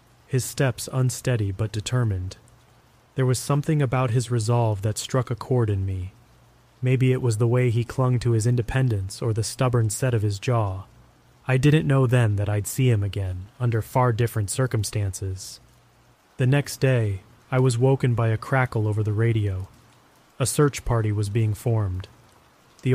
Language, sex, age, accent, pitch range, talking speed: English, male, 30-49, American, 105-125 Hz, 175 wpm